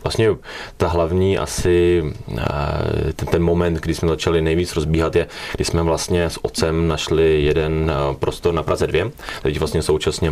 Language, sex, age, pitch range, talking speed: Czech, male, 30-49, 75-85 Hz, 155 wpm